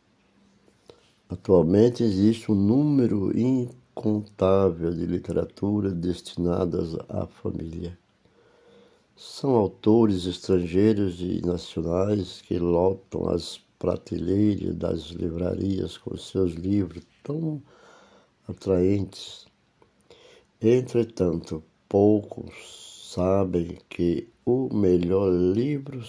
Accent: Brazilian